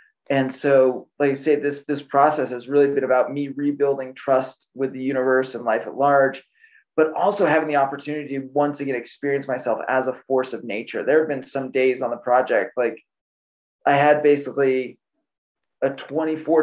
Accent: American